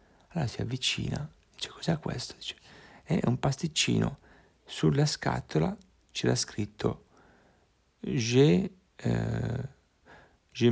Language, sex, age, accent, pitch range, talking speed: Italian, male, 40-59, native, 105-135 Hz, 100 wpm